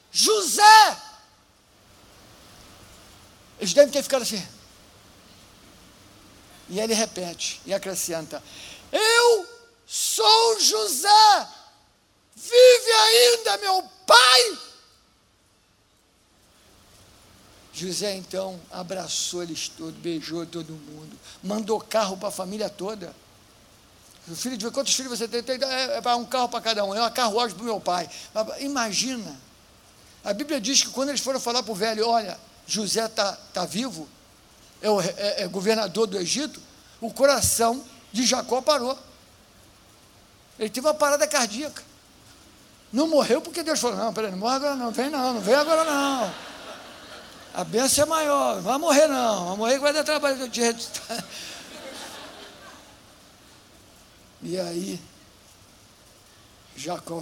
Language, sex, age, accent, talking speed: Portuguese, male, 60-79, Brazilian, 130 wpm